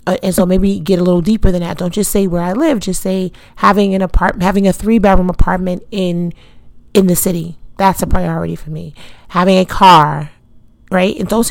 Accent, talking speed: American, 215 wpm